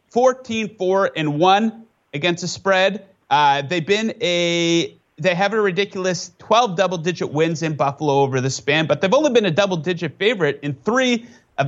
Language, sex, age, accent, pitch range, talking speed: English, male, 30-49, American, 130-180 Hz, 160 wpm